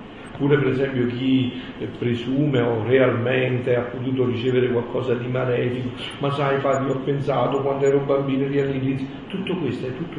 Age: 50-69